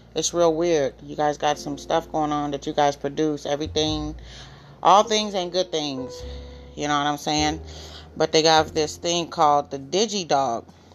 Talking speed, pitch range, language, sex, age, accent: 185 wpm, 135-170 Hz, English, female, 30-49, American